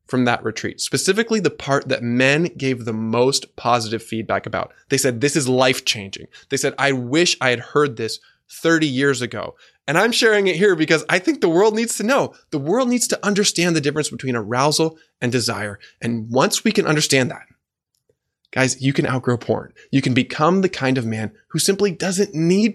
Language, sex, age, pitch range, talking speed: English, male, 20-39, 120-165 Hz, 205 wpm